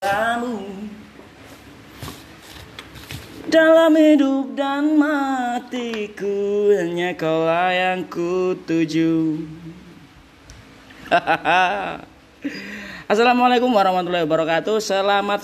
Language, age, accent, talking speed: Indonesian, 20-39, native, 45 wpm